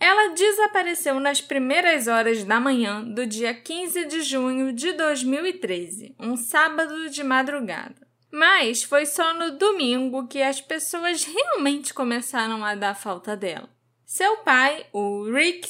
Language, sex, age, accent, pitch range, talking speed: Portuguese, female, 10-29, Brazilian, 225-320 Hz, 140 wpm